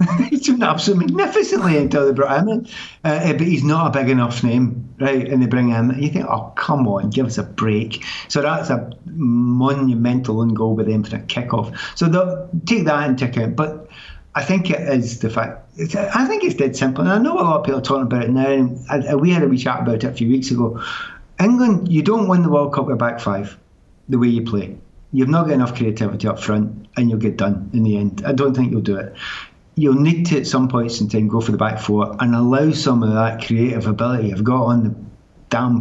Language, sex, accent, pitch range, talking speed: English, male, British, 115-145 Hz, 250 wpm